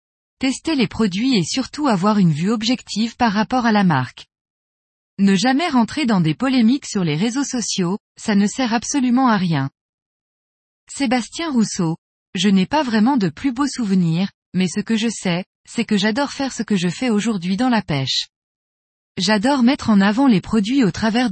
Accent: French